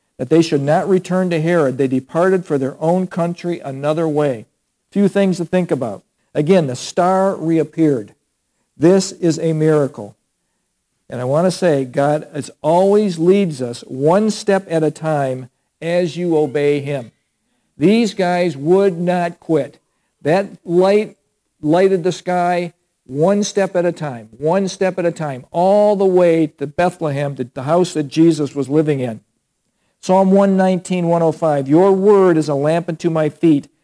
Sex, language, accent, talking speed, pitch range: male, English, American, 155 wpm, 145-185 Hz